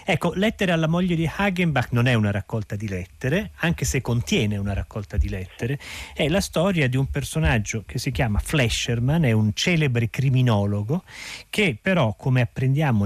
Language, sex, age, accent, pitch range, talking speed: Italian, male, 40-59, native, 110-150 Hz, 170 wpm